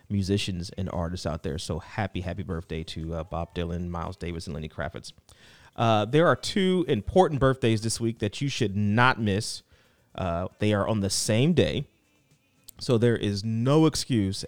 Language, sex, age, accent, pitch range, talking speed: English, male, 30-49, American, 100-130 Hz, 180 wpm